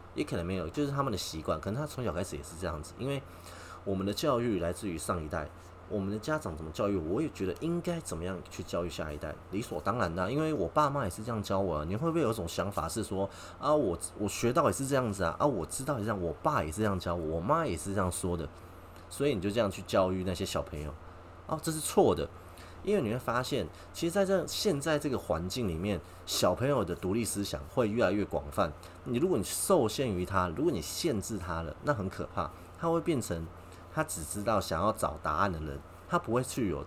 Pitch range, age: 85-110 Hz, 30-49